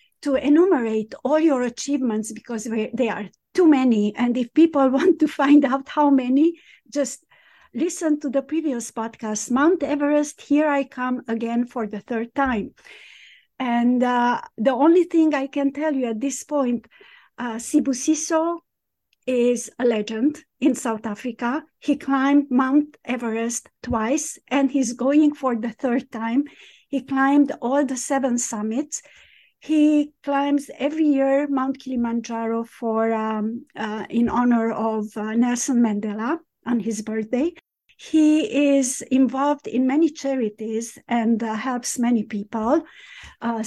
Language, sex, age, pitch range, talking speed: English, female, 50-69, 230-290 Hz, 140 wpm